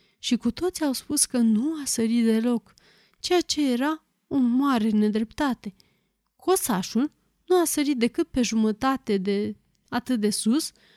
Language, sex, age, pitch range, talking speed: Romanian, female, 20-39, 220-280 Hz, 150 wpm